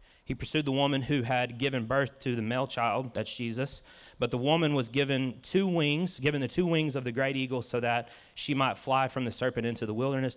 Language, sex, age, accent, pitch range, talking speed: English, male, 30-49, American, 115-135 Hz, 230 wpm